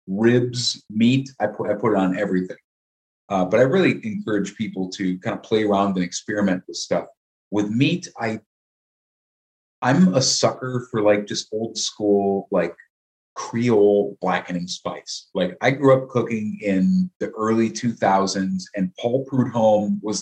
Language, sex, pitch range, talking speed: English, male, 90-115 Hz, 145 wpm